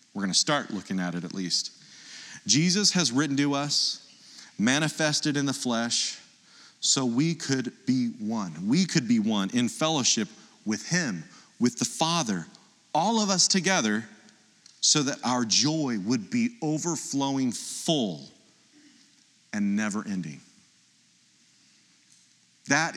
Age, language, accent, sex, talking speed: 40-59, English, American, male, 130 wpm